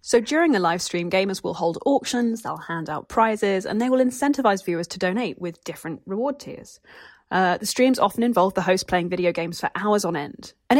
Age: 20-39